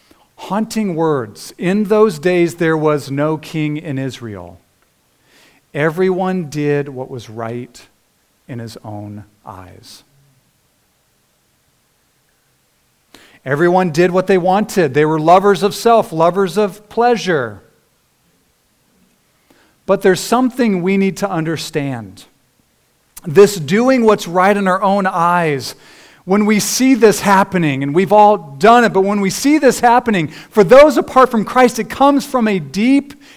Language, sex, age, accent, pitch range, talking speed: English, male, 40-59, American, 135-205 Hz, 135 wpm